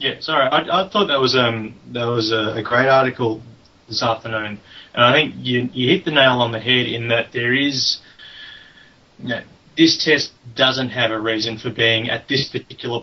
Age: 30-49